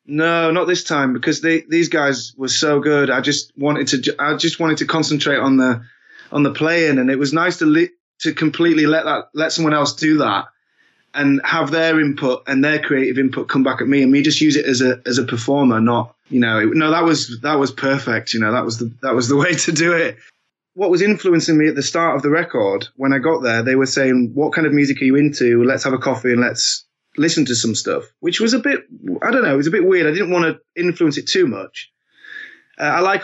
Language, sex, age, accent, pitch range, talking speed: English, male, 20-39, British, 135-165 Hz, 255 wpm